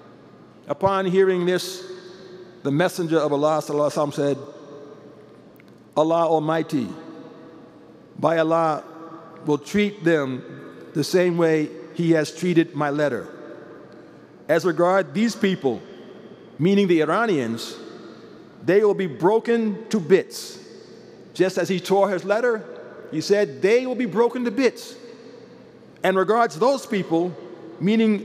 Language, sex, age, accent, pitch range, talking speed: English, male, 50-69, American, 170-230 Hz, 115 wpm